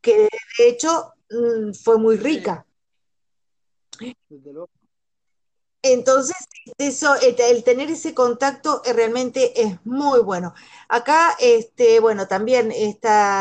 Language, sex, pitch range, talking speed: Spanish, female, 195-275 Hz, 105 wpm